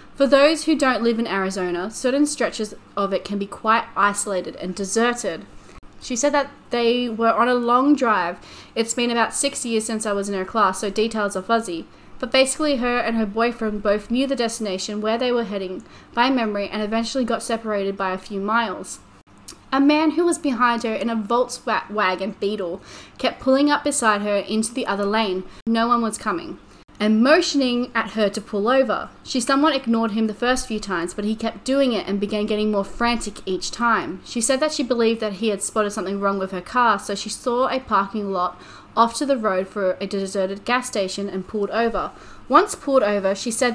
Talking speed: 210 wpm